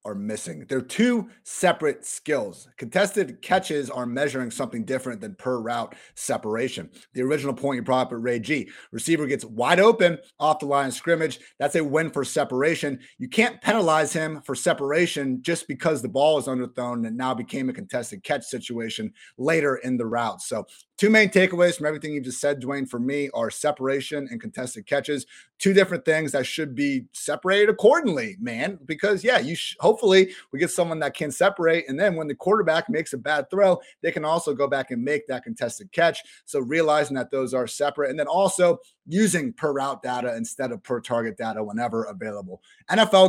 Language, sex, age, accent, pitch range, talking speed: English, male, 30-49, American, 130-185 Hz, 195 wpm